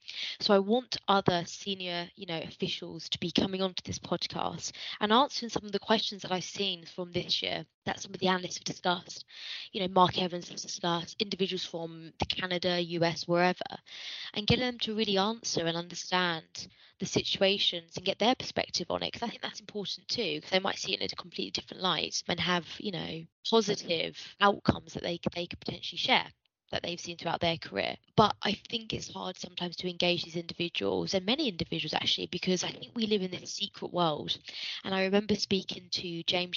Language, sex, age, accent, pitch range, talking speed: English, female, 20-39, British, 175-205 Hz, 200 wpm